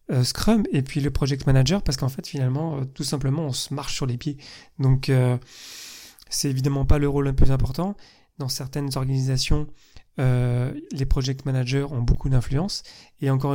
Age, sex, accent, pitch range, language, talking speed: 30-49, male, French, 125-150 Hz, French, 175 wpm